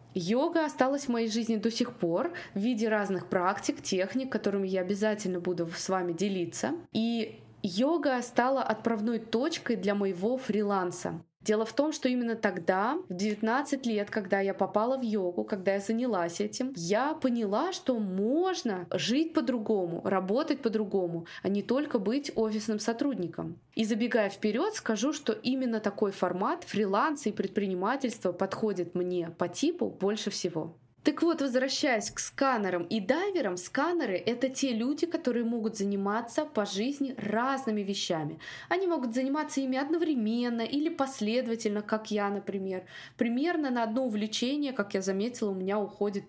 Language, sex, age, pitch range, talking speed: Russian, female, 20-39, 195-255 Hz, 150 wpm